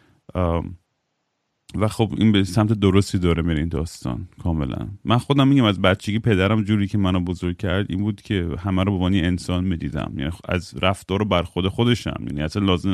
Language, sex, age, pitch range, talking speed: Persian, male, 30-49, 90-105 Hz, 180 wpm